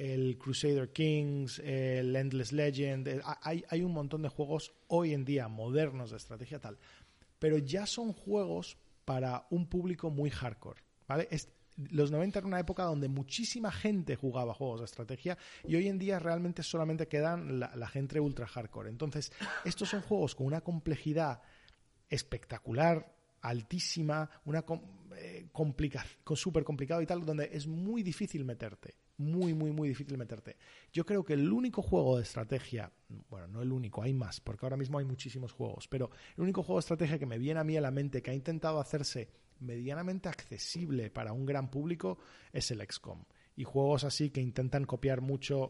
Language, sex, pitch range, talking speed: Spanish, male, 125-160 Hz, 175 wpm